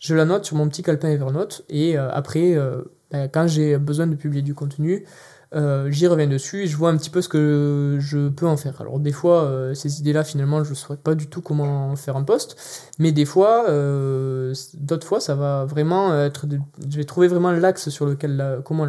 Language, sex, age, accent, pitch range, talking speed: French, male, 20-39, French, 140-165 Hz, 205 wpm